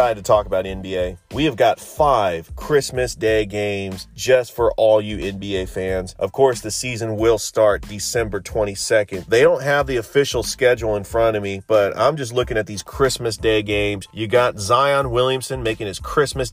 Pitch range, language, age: 105-125 Hz, English, 30-49